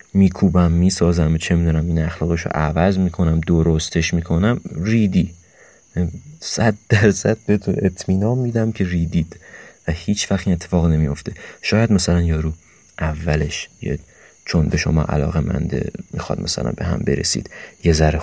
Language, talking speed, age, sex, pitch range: Persian, 140 wpm, 30-49, male, 80-95 Hz